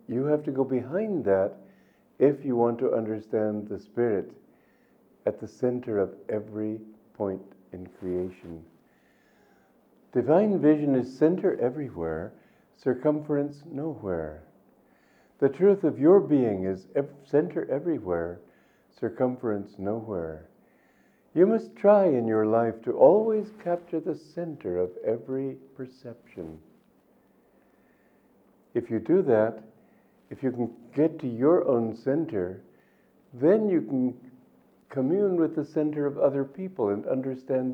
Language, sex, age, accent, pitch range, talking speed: English, male, 60-79, American, 105-145 Hz, 120 wpm